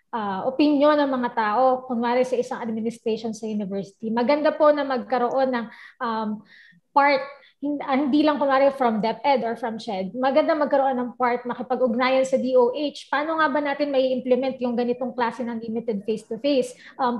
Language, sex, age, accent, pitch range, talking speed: Filipino, female, 20-39, native, 235-285 Hz, 160 wpm